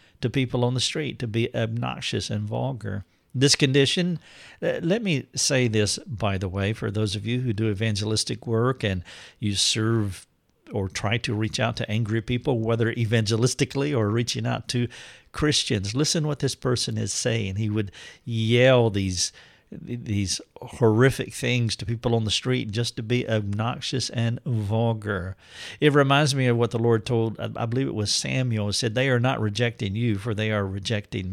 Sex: male